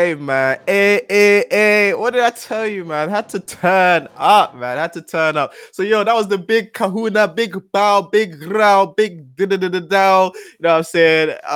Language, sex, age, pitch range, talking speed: English, male, 20-39, 125-170 Hz, 200 wpm